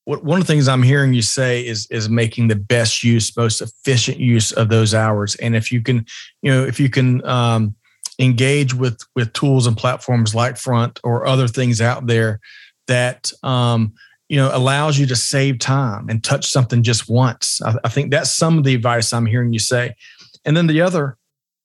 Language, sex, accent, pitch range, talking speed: English, male, American, 115-135 Hz, 200 wpm